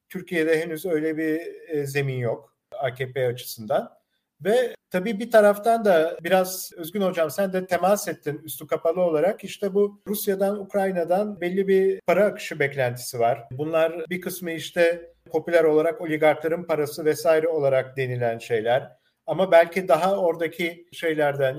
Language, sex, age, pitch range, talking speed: Turkish, male, 50-69, 150-185 Hz, 140 wpm